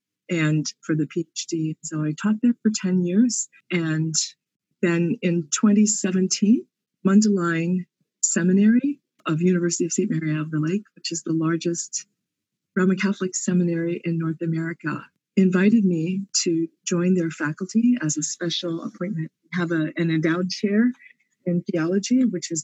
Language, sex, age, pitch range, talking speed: English, female, 40-59, 165-195 Hz, 140 wpm